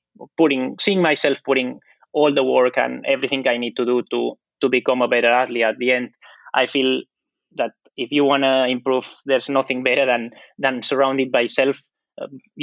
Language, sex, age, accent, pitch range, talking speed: English, male, 20-39, Spanish, 125-145 Hz, 185 wpm